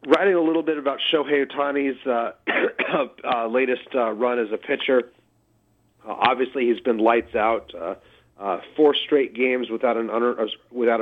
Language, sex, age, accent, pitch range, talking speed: English, male, 40-59, American, 110-125 Hz, 145 wpm